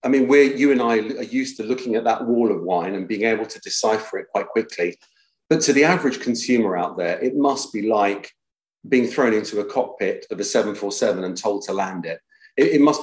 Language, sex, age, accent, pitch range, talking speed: English, male, 40-59, British, 110-140 Hz, 225 wpm